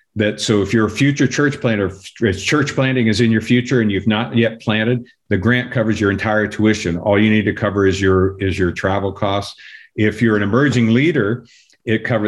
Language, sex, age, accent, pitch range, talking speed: English, male, 50-69, American, 95-120 Hz, 215 wpm